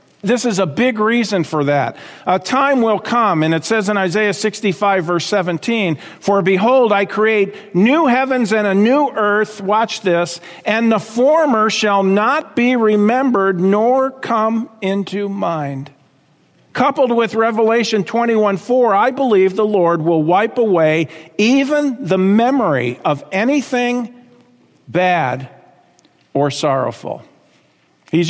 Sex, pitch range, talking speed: male, 140-215 Hz, 135 wpm